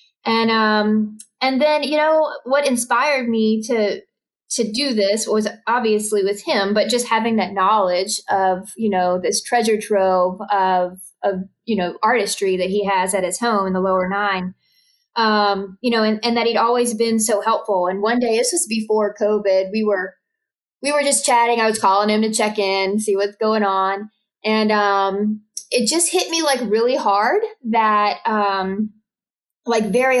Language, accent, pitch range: English, American, 200-245 Hz